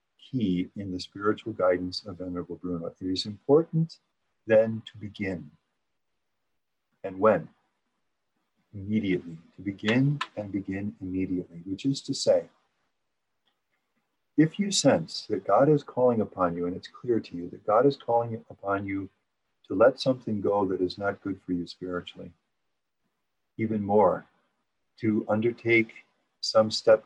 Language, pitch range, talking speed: English, 90-115 Hz, 140 wpm